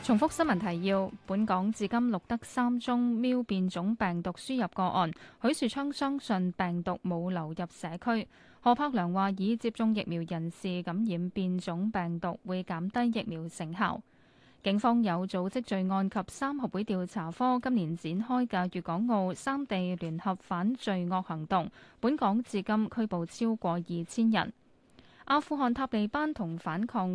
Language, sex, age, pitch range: Chinese, female, 10-29, 180-235 Hz